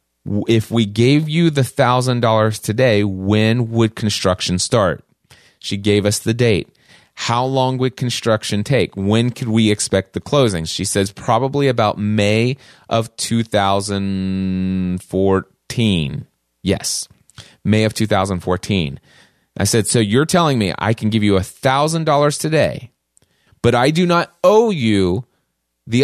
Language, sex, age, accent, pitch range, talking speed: English, male, 30-49, American, 100-130 Hz, 130 wpm